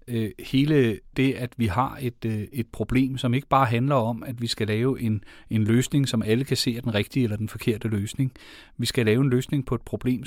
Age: 30-49